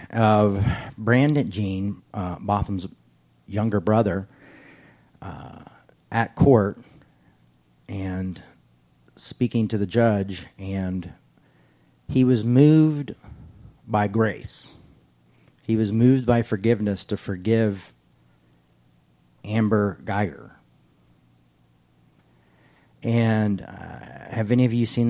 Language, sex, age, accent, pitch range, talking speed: English, male, 40-59, American, 95-115 Hz, 90 wpm